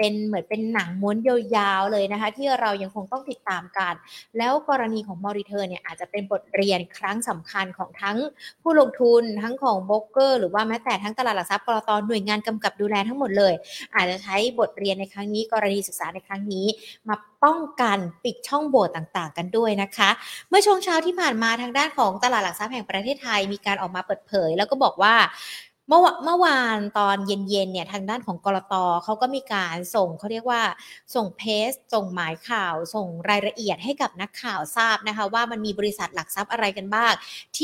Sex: female